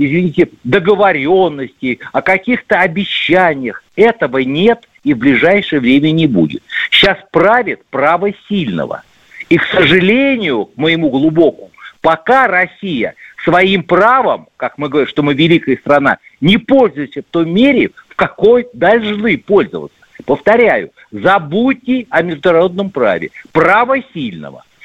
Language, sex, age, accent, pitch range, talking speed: Russian, male, 50-69, native, 165-235 Hz, 120 wpm